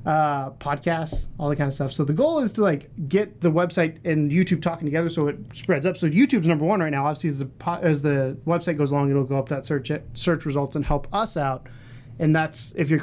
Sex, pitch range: male, 135-170 Hz